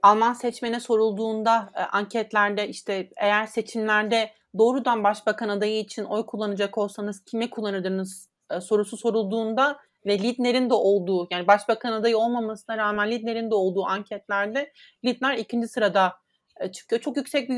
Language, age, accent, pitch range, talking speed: Turkish, 30-49, native, 210-255 Hz, 140 wpm